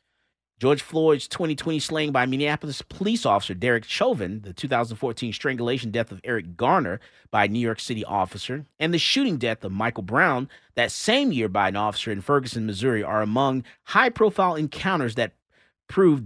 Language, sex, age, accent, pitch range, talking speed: English, male, 30-49, American, 110-140 Hz, 165 wpm